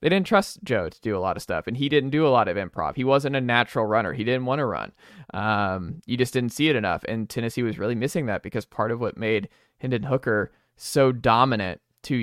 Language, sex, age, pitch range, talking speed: English, male, 20-39, 105-130 Hz, 250 wpm